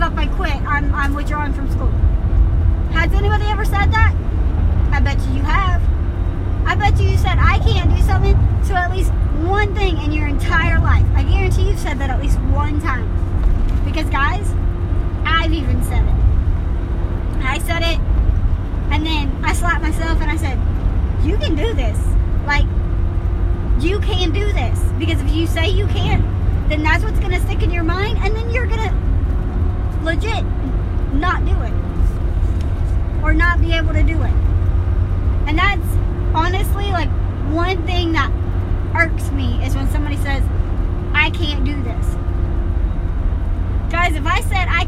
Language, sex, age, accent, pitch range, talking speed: English, male, 20-39, American, 85-90 Hz, 165 wpm